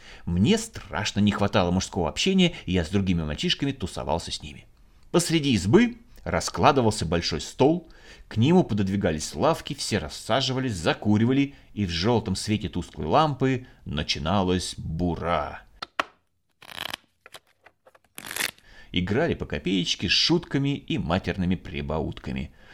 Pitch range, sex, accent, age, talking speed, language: 85-130 Hz, male, native, 30-49, 110 wpm, Russian